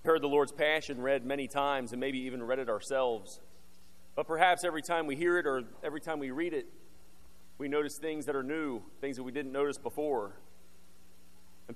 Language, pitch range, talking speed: English, 115-155 Hz, 200 wpm